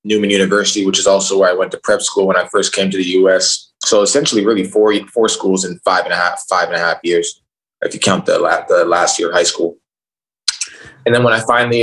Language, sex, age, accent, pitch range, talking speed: English, male, 20-39, American, 95-145 Hz, 250 wpm